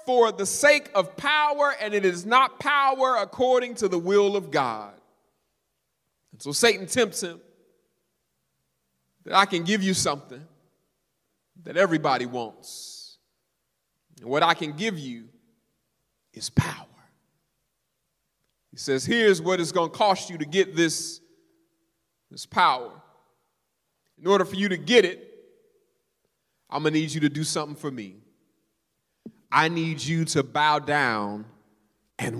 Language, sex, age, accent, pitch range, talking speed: English, male, 30-49, American, 145-230 Hz, 140 wpm